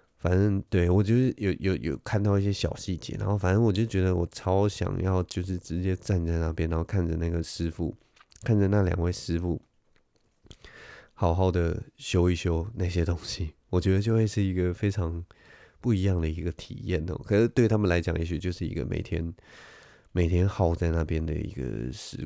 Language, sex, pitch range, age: Chinese, male, 85-105 Hz, 20-39